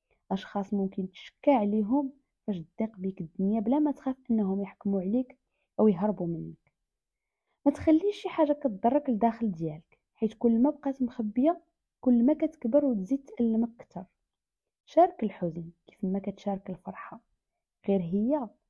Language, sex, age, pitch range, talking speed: Arabic, female, 20-39, 185-255 Hz, 140 wpm